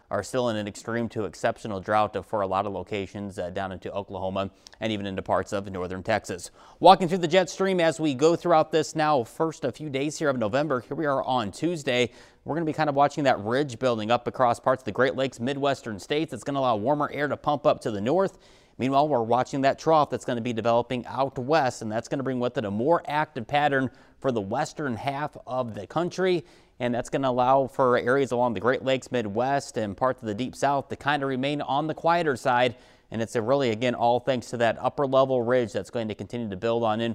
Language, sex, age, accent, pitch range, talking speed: English, male, 30-49, American, 115-150 Hz, 245 wpm